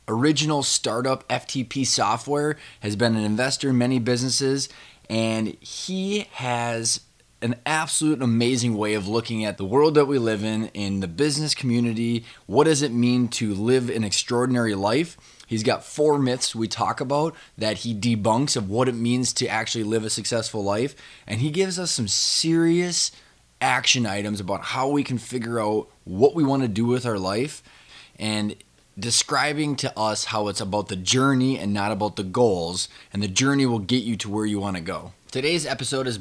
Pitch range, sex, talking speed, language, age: 105-130 Hz, male, 180 wpm, English, 20-39